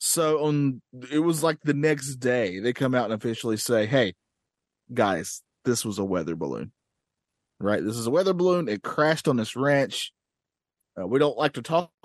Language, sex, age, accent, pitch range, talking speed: English, male, 30-49, American, 120-160 Hz, 190 wpm